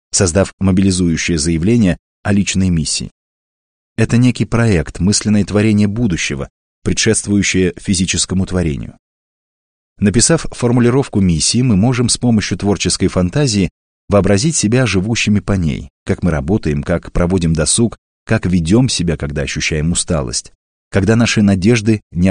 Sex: male